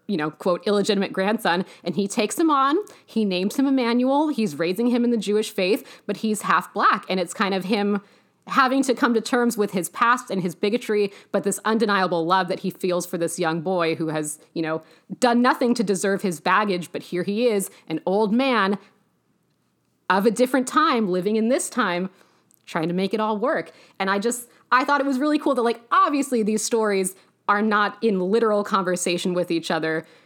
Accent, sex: American, female